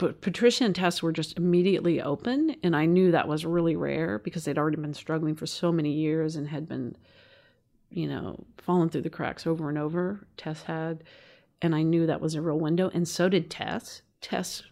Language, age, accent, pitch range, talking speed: English, 40-59, American, 155-175 Hz, 210 wpm